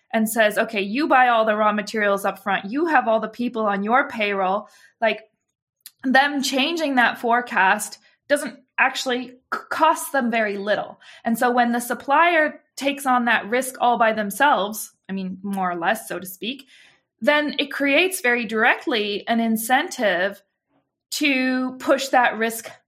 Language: English